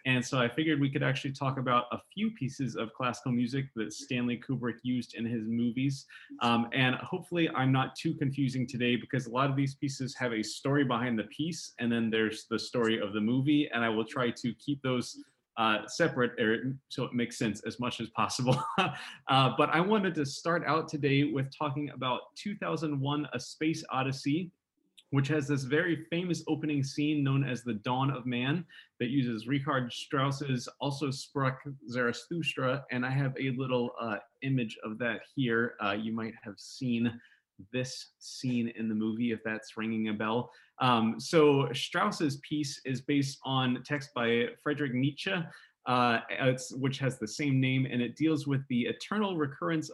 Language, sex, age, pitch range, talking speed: English, male, 20-39, 120-150 Hz, 185 wpm